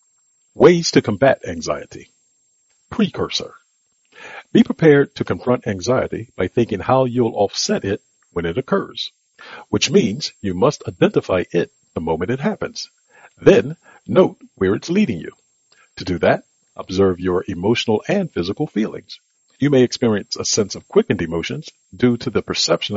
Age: 50-69